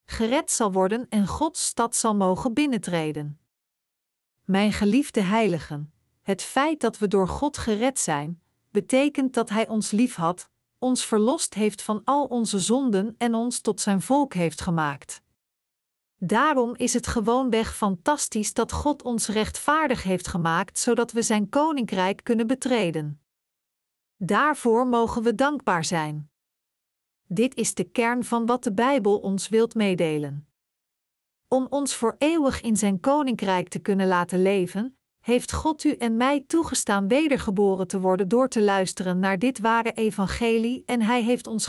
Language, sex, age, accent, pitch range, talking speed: Dutch, female, 50-69, Dutch, 195-250 Hz, 150 wpm